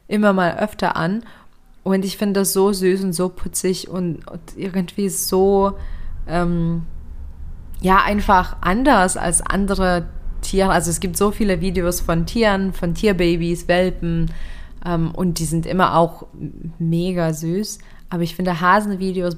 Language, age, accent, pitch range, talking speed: German, 20-39, German, 170-195 Hz, 140 wpm